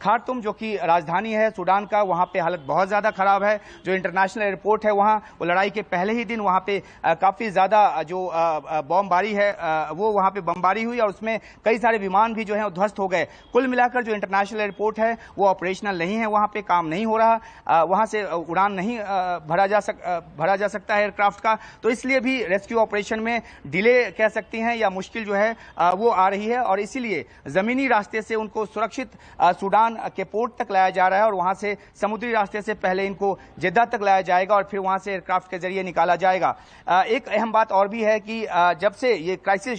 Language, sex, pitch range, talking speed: Hindi, male, 190-220 Hz, 215 wpm